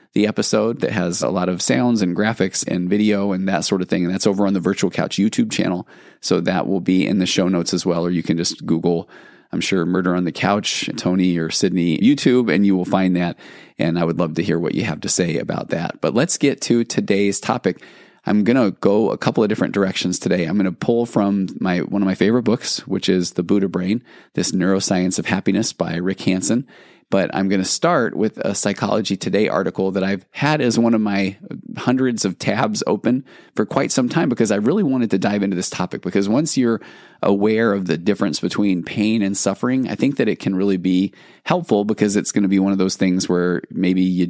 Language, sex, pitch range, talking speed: English, male, 90-105 Hz, 235 wpm